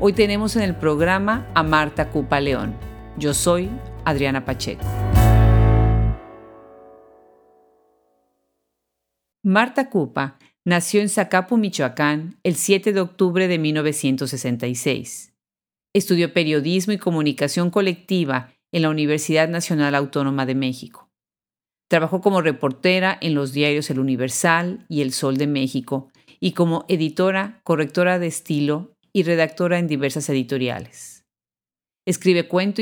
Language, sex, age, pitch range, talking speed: Spanish, female, 40-59, 135-185 Hz, 115 wpm